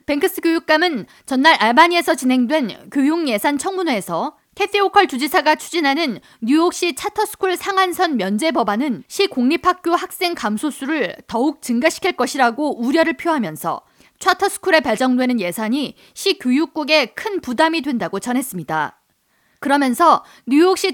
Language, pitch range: Korean, 250-345 Hz